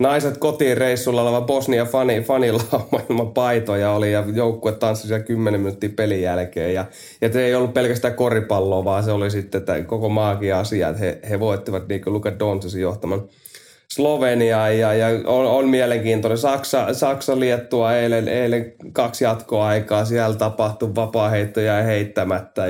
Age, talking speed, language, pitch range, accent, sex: 20-39, 145 wpm, Finnish, 105-120 Hz, native, male